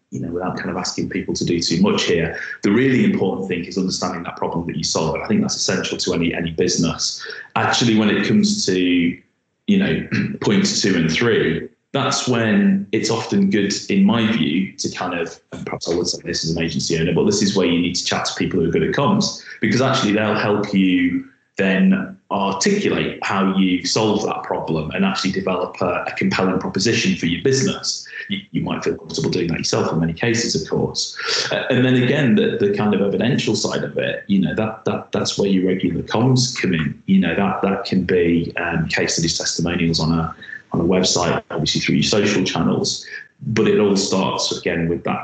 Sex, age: male, 30-49